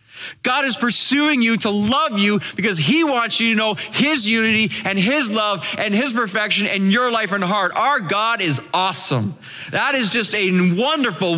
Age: 30-49